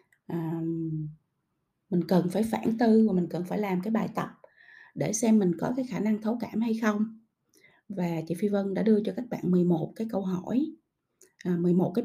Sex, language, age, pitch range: female, Vietnamese, 20-39, 180-230 Hz